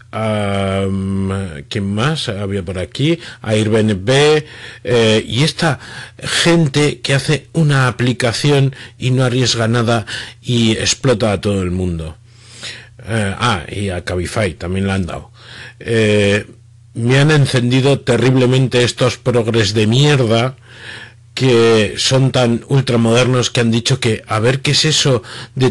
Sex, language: male, Spanish